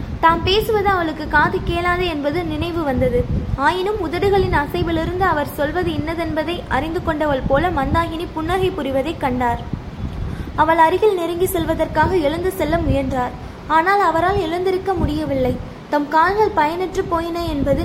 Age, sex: 20-39, female